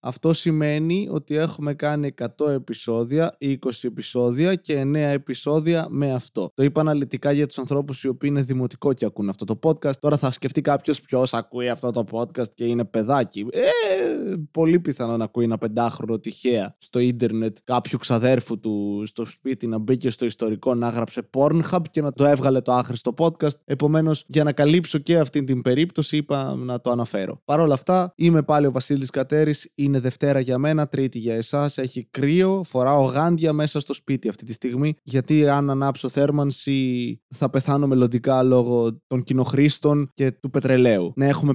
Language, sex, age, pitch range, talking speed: Greek, male, 20-39, 125-150 Hz, 175 wpm